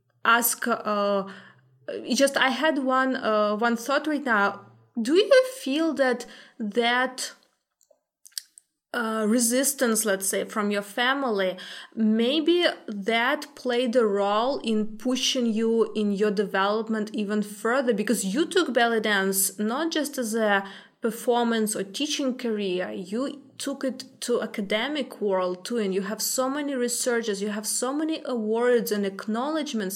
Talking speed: 140 wpm